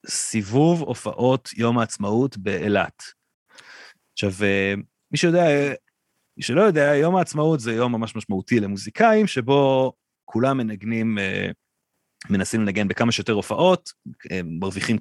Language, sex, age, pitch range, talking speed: Hebrew, male, 30-49, 100-135 Hz, 110 wpm